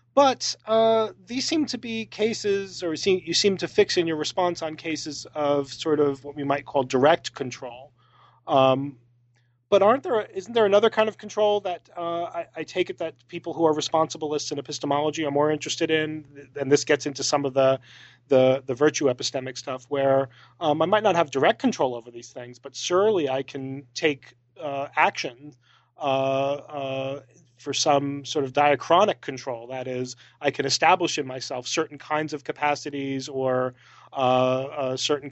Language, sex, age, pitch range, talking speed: English, male, 30-49, 135-170 Hz, 180 wpm